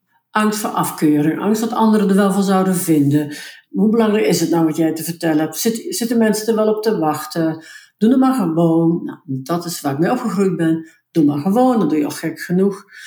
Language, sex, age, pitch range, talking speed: Dutch, female, 50-69, 165-225 Hz, 220 wpm